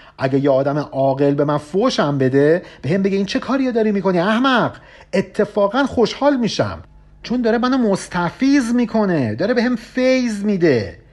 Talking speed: 160 wpm